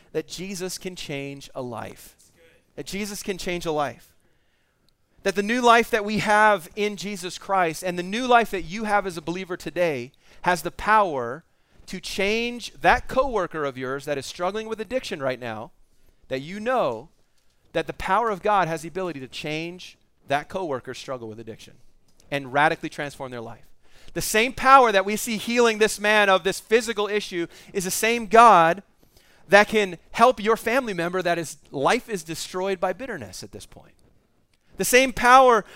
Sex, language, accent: male, English, American